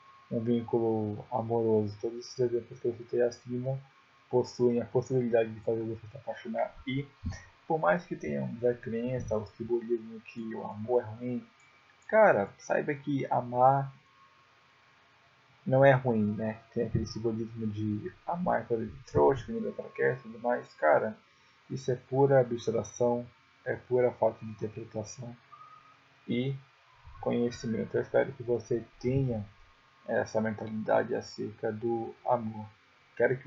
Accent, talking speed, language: Brazilian, 140 wpm, Portuguese